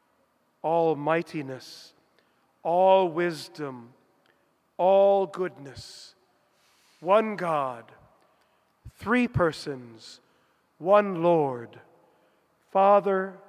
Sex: male